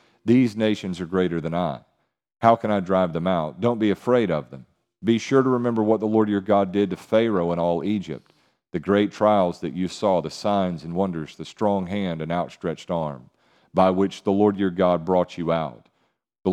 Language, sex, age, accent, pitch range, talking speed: English, male, 40-59, American, 90-110 Hz, 210 wpm